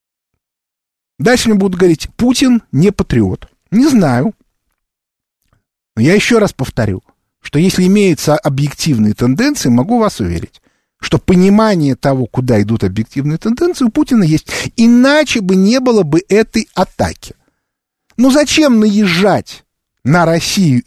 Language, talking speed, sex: Russian, 125 wpm, male